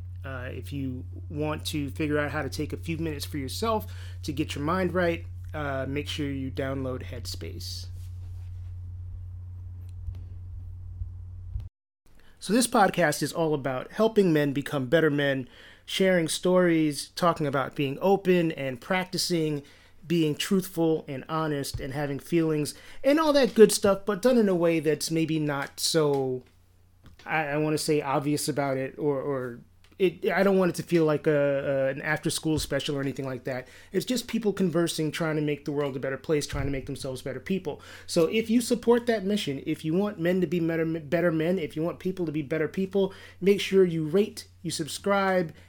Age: 30-49